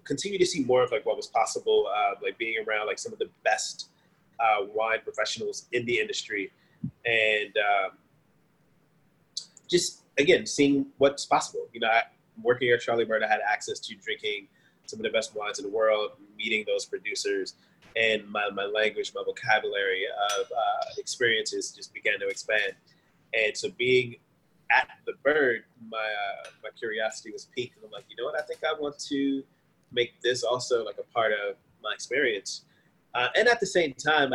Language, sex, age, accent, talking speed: English, male, 20-39, American, 180 wpm